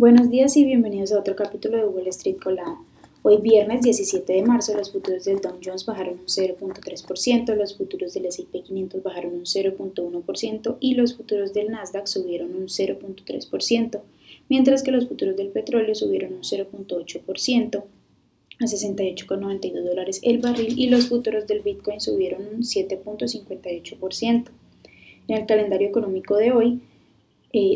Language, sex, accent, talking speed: Spanish, female, Colombian, 150 wpm